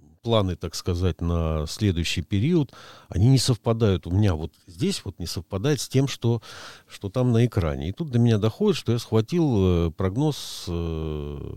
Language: Russian